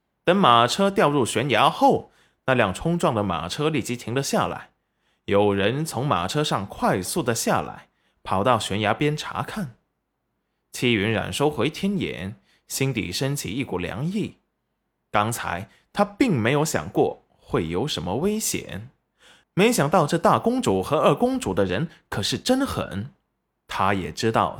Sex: male